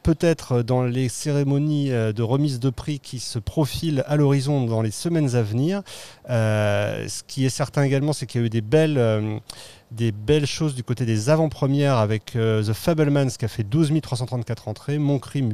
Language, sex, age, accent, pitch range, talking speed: French, male, 30-49, French, 115-150 Hz, 195 wpm